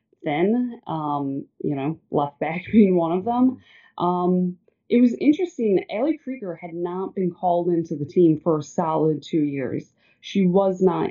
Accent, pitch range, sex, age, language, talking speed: American, 160-190 Hz, female, 20-39, English, 165 wpm